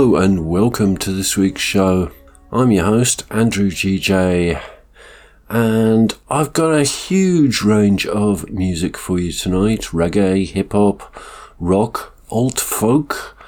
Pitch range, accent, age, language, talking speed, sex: 95-120 Hz, British, 50-69, English, 120 wpm, male